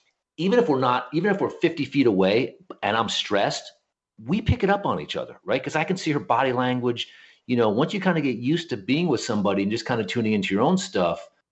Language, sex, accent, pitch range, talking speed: English, male, American, 110-160 Hz, 255 wpm